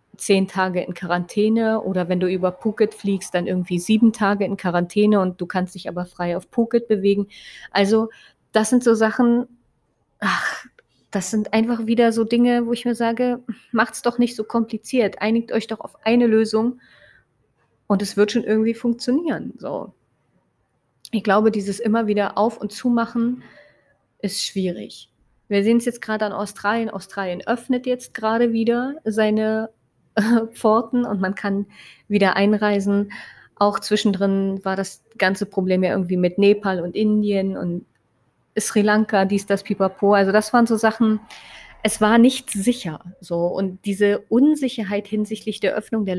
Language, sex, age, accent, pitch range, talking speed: German, female, 30-49, German, 190-225 Hz, 160 wpm